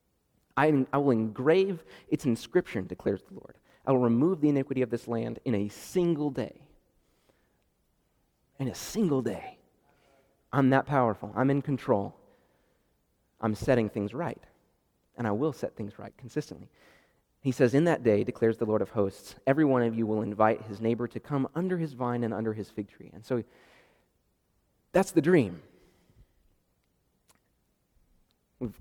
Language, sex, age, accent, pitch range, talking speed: English, male, 30-49, American, 110-150 Hz, 155 wpm